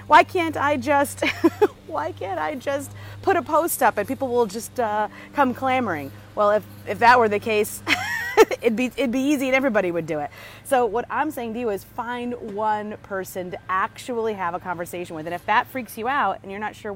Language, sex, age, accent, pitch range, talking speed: English, female, 30-49, American, 185-265 Hz, 220 wpm